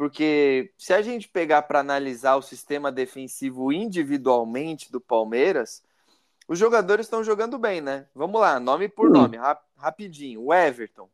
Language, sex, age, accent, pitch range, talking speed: Portuguese, male, 20-39, Brazilian, 135-180 Hz, 150 wpm